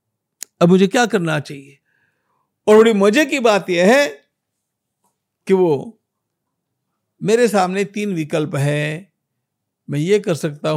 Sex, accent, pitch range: male, native, 150-230 Hz